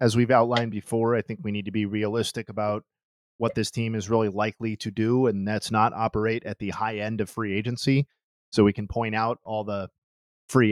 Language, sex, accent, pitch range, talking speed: English, male, American, 105-120 Hz, 220 wpm